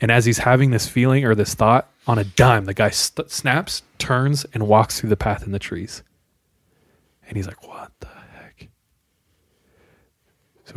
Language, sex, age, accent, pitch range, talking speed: English, male, 20-39, American, 105-130 Hz, 175 wpm